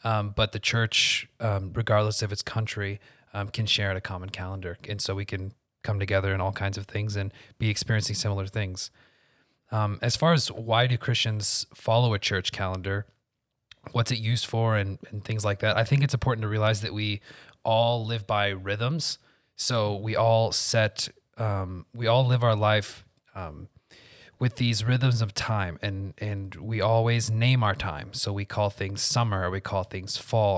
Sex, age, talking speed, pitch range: male, 20-39, 190 wpm, 100-115 Hz